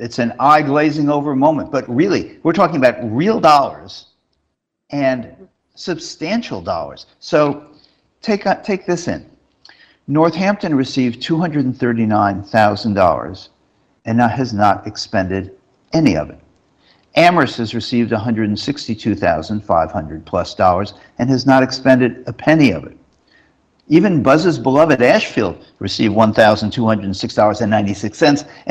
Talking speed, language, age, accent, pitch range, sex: 100 wpm, English, 50-69, American, 100-140 Hz, male